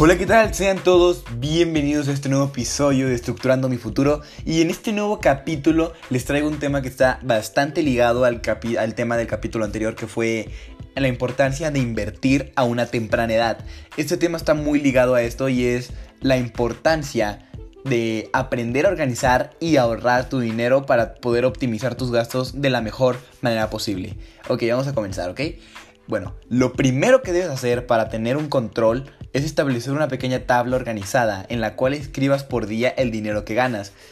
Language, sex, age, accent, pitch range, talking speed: Spanish, male, 20-39, Mexican, 110-140 Hz, 180 wpm